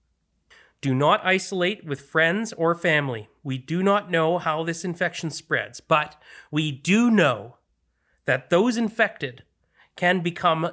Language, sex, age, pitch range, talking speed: English, male, 30-49, 125-180 Hz, 135 wpm